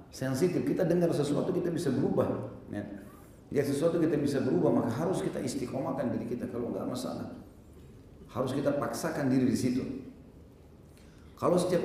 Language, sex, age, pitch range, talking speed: Indonesian, male, 40-59, 105-135 Hz, 145 wpm